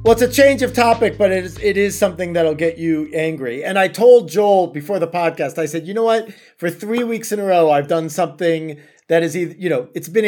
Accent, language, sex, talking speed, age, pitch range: American, English, male, 255 wpm, 30-49, 150-190 Hz